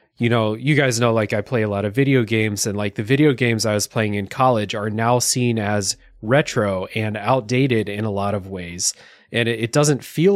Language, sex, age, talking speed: English, male, 30-49, 225 wpm